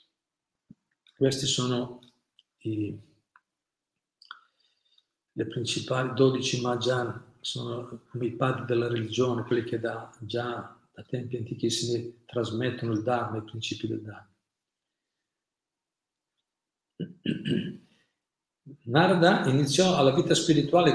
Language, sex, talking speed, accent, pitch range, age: Italian, male, 90 wpm, native, 120-150 Hz, 50-69